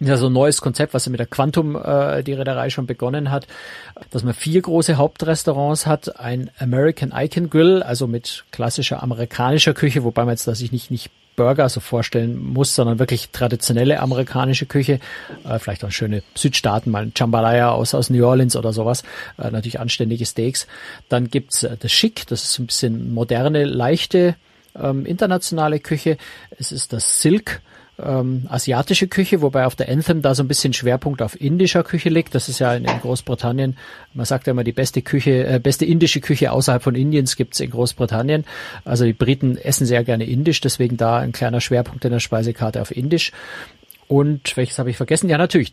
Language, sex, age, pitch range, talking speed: German, male, 50-69, 120-150 Hz, 190 wpm